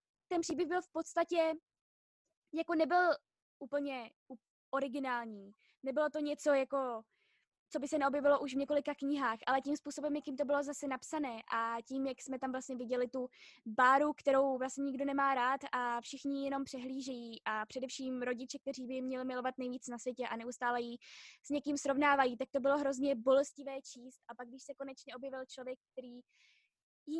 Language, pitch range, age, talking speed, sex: Czech, 235-280 Hz, 20-39, 175 wpm, female